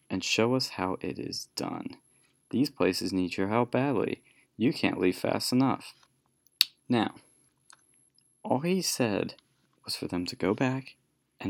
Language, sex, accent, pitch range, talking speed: English, male, American, 100-135 Hz, 150 wpm